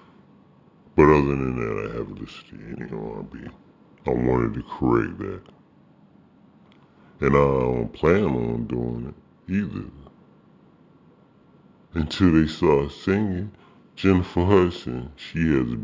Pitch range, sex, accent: 65-90 Hz, female, American